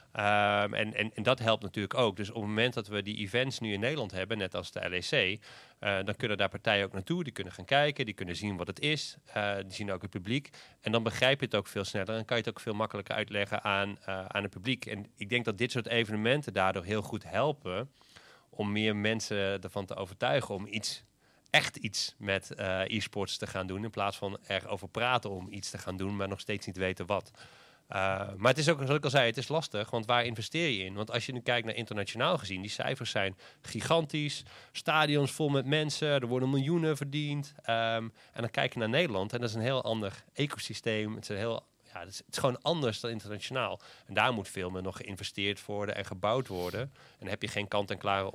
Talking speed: 235 wpm